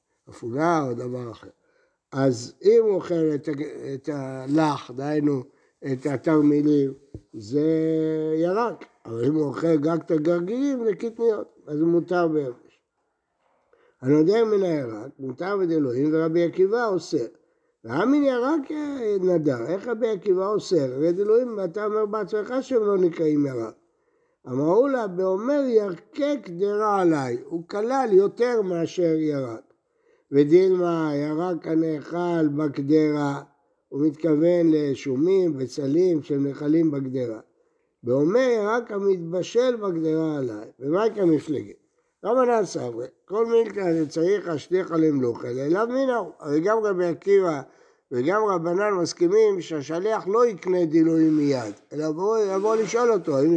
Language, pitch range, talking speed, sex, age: Hebrew, 150-230 Hz, 120 wpm, male, 60-79